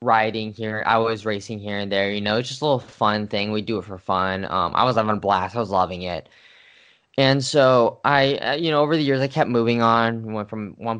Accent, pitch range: American, 100-120 Hz